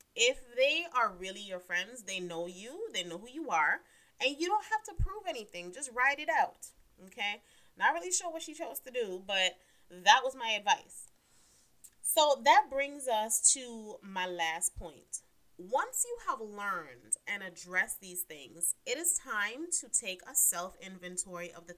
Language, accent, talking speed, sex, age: English, American, 175 wpm, female, 30-49